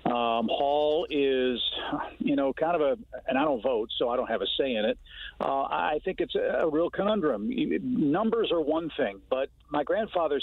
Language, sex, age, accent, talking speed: English, male, 50-69, American, 195 wpm